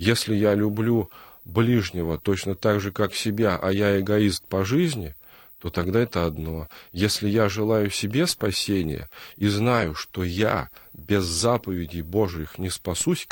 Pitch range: 90-110 Hz